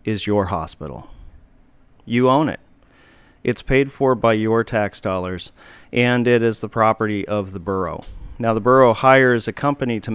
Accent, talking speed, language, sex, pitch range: American, 165 wpm, English, male, 105-125 Hz